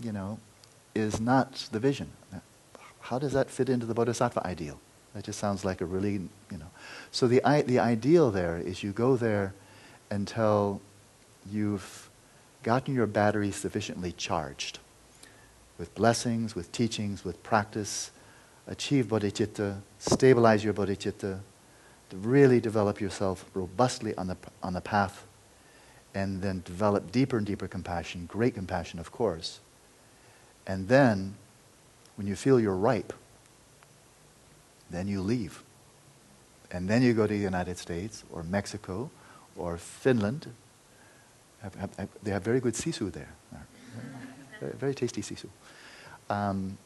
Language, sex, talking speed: English, male, 130 wpm